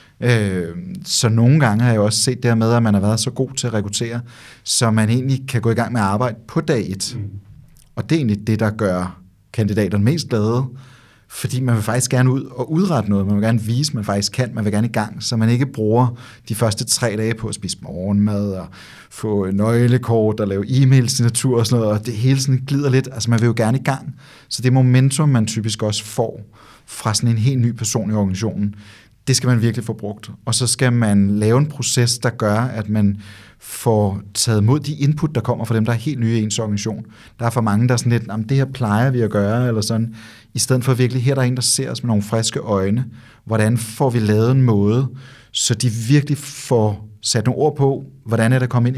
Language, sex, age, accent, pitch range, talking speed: Danish, male, 30-49, native, 110-130 Hz, 240 wpm